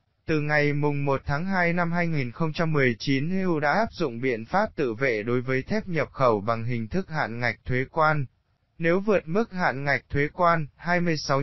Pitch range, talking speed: 130-165 Hz, 185 wpm